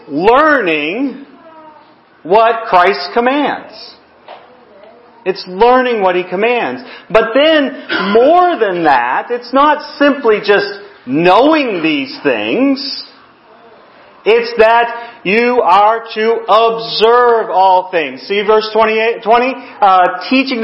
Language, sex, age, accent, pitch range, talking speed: English, male, 40-59, American, 170-245 Hz, 100 wpm